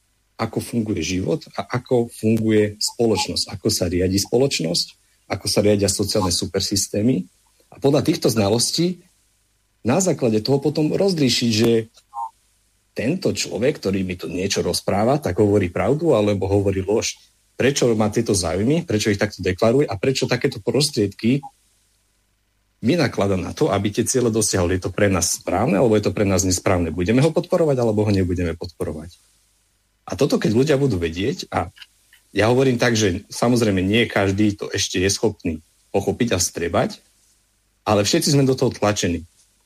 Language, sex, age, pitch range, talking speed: Slovak, male, 40-59, 100-120 Hz, 155 wpm